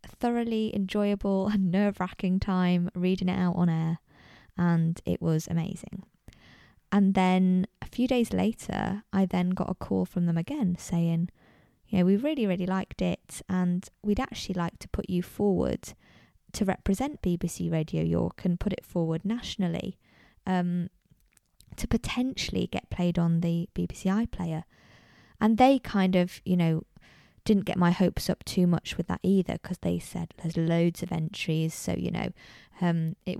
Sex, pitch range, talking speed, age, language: female, 175-205 Hz, 160 wpm, 20-39, English